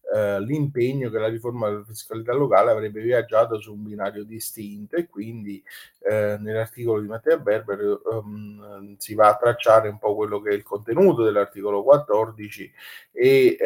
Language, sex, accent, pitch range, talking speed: Italian, male, native, 110-130 Hz, 155 wpm